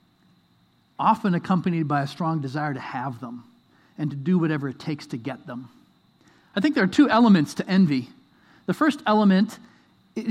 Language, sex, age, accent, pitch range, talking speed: English, male, 40-59, American, 155-210 Hz, 175 wpm